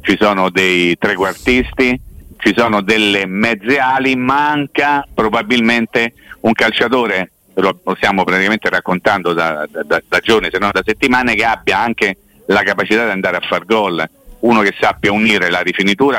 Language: Italian